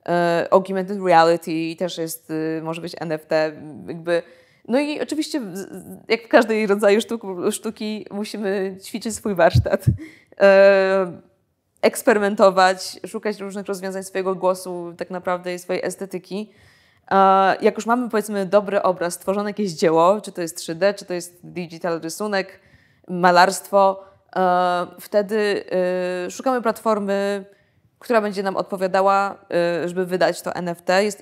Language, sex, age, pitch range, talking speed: Polish, female, 20-39, 175-200 Hz, 135 wpm